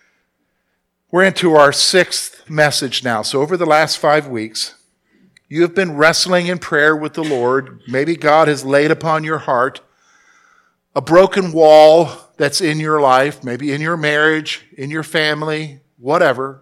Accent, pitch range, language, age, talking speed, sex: American, 160-210 Hz, English, 50-69, 155 wpm, male